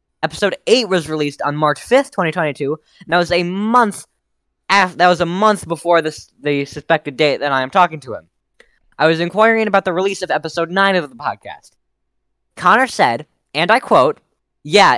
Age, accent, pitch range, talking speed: 10-29, American, 145-190 Hz, 170 wpm